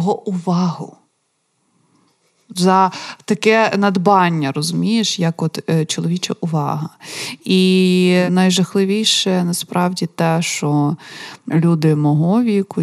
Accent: native